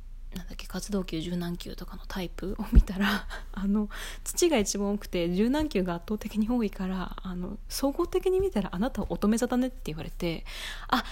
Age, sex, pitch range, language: 20-39, female, 180-235 Hz, Japanese